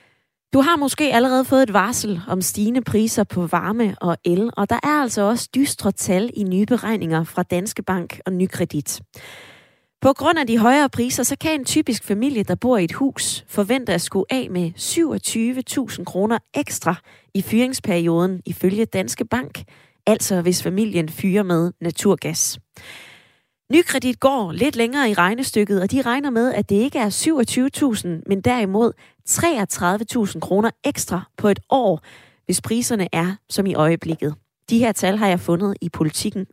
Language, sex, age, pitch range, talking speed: Danish, female, 20-39, 180-245 Hz, 165 wpm